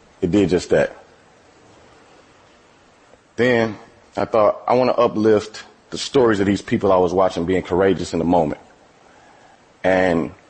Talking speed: 145 wpm